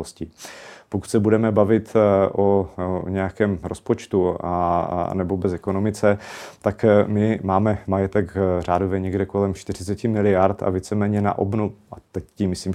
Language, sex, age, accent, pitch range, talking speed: Czech, male, 30-49, native, 90-100 Hz, 135 wpm